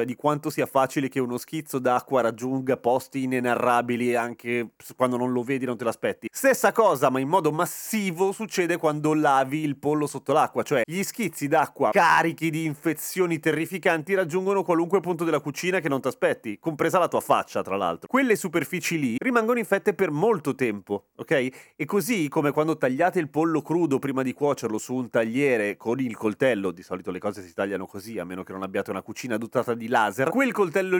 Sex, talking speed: male, 195 wpm